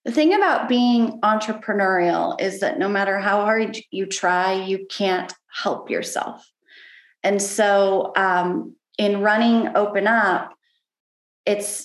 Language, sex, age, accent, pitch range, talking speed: English, female, 20-39, American, 175-215 Hz, 125 wpm